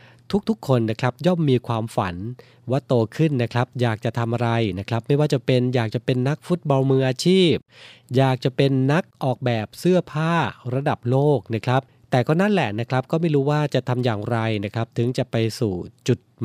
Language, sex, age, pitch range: Thai, male, 20-39, 120-145 Hz